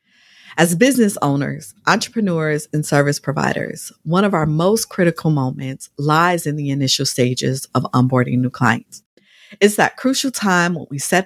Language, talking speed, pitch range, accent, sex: English, 155 wpm, 140-190 Hz, American, female